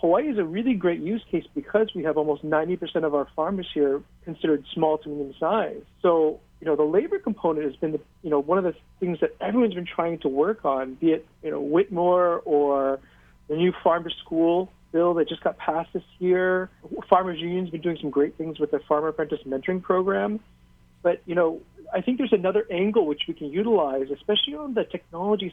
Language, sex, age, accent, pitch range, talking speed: English, male, 40-59, American, 150-185 Hz, 210 wpm